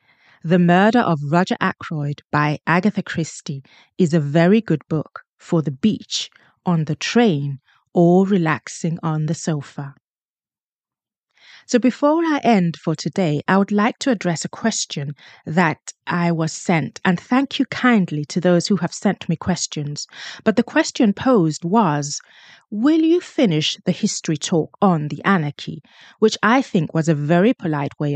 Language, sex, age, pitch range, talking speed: English, female, 30-49, 155-210 Hz, 160 wpm